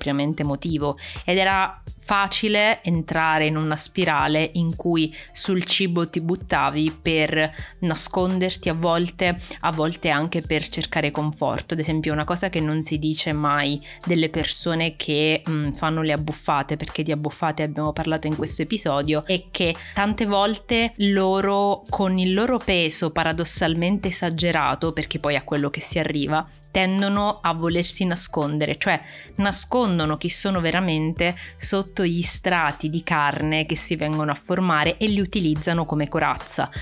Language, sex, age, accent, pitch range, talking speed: Italian, female, 20-39, native, 155-180 Hz, 150 wpm